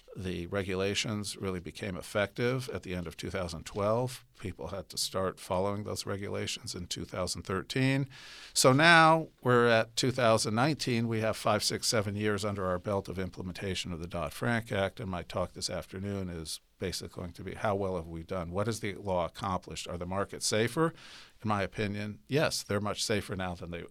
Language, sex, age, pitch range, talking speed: English, male, 50-69, 90-115 Hz, 185 wpm